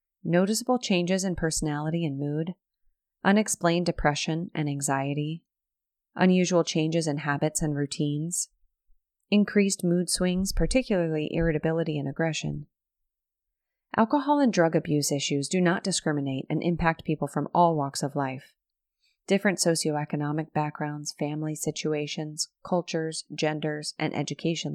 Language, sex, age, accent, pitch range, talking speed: English, female, 30-49, American, 145-180 Hz, 115 wpm